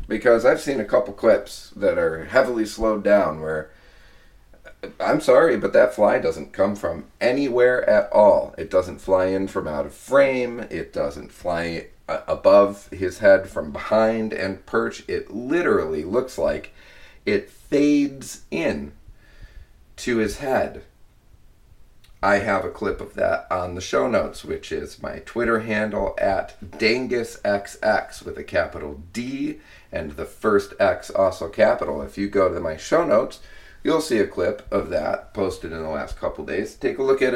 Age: 40-59